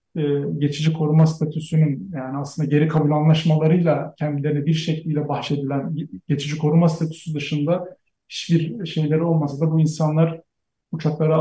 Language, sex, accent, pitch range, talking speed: Turkish, male, native, 145-165 Hz, 125 wpm